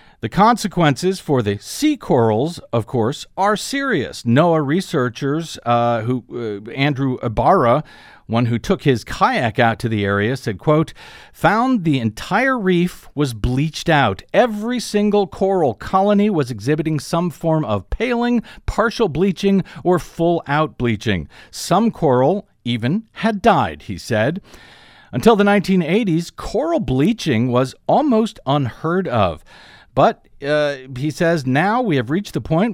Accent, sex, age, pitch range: American, male, 50-69, 125-190 Hz